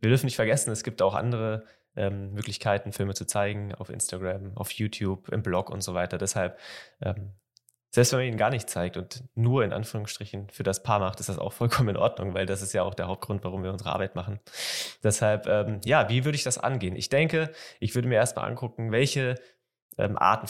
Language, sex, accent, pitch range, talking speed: German, male, German, 95-120 Hz, 220 wpm